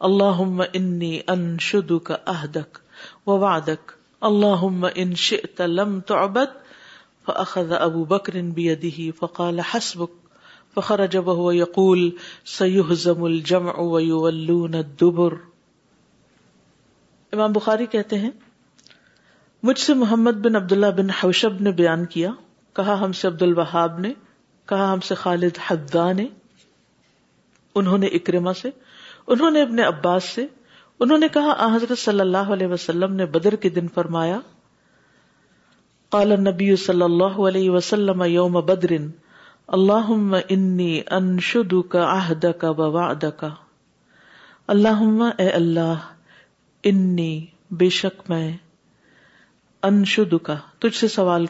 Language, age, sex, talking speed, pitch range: Urdu, 50-69, female, 85 wpm, 170-205 Hz